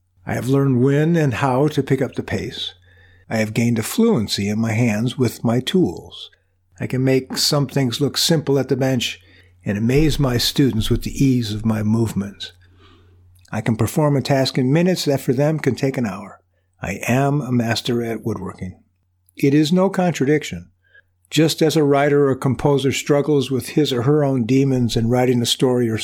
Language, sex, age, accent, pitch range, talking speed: English, male, 50-69, American, 100-140 Hz, 195 wpm